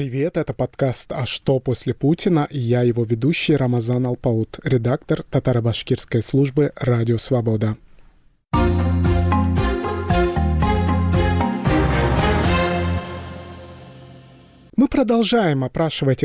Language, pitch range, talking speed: Russian, 120-155 Hz, 80 wpm